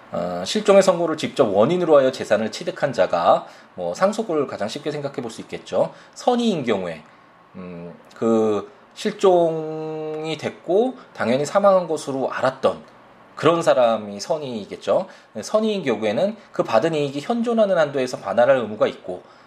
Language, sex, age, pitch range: Korean, male, 20-39, 120-195 Hz